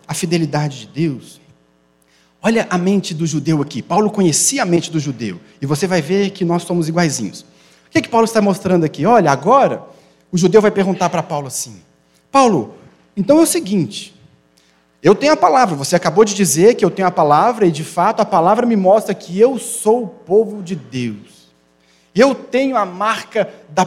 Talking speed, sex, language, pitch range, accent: 195 wpm, male, Portuguese, 160-235 Hz, Brazilian